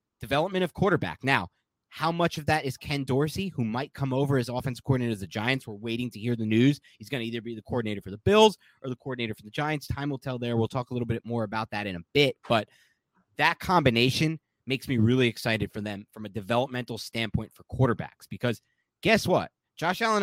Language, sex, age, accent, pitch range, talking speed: English, male, 30-49, American, 115-155 Hz, 230 wpm